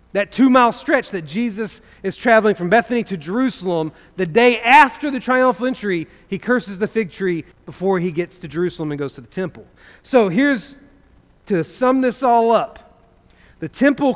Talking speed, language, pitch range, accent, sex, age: 180 wpm, English, 160-225 Hz, American, male, 40-59